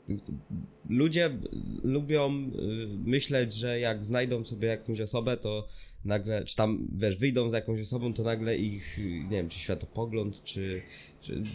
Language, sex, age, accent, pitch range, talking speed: Polish, male, 20-39, native, 105-130 Hz, 135 wpm